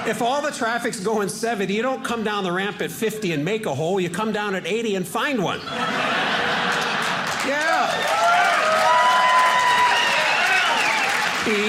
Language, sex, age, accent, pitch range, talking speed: English, male, 50-69, American, 155-235 Hz, 145 wpm